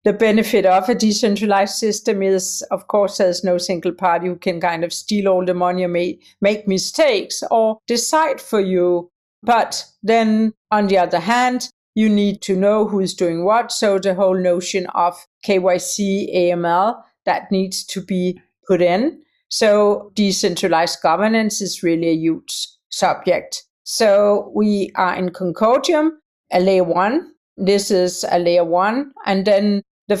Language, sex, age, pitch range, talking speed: English, female, 50-69, 185-225 Hz, 155 wpm